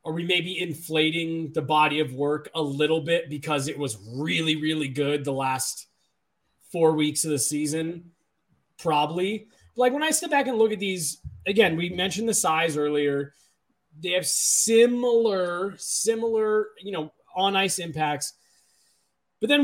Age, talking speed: 20-39, 155 wpm